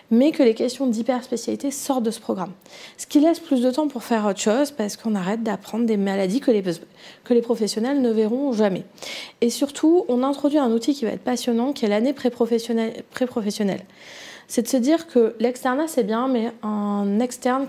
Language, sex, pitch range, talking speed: French, female, 215-255 Hz, 200 wpm